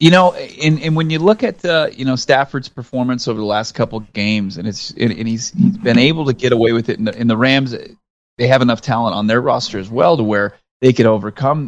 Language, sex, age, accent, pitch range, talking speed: English, male, 30-49, American, 110-140 Hz, 265 wpm